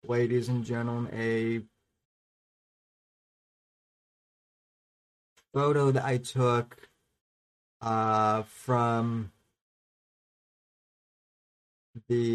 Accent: American